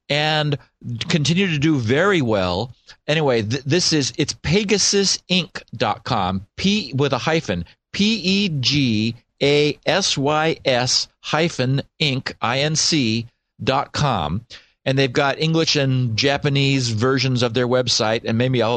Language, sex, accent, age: English, male, American, 50-69